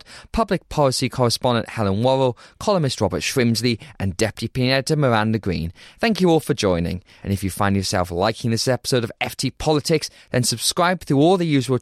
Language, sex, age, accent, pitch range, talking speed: English, male, 20-39, British, 115-160 Hz, 180 wpm